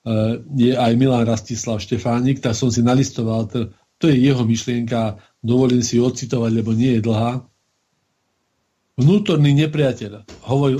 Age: 40-59